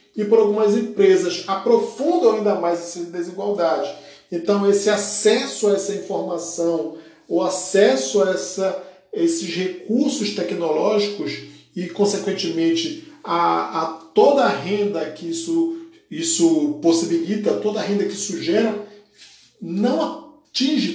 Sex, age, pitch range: male, 50-69, 165-215 Hz